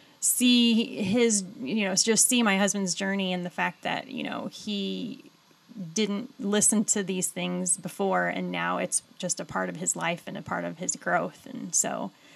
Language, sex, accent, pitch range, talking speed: English, female, American, 185-240 Hz, 190 wpm